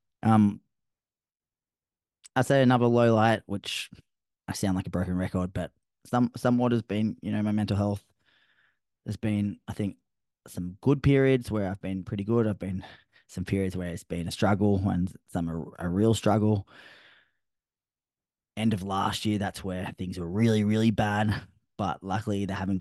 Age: 20-39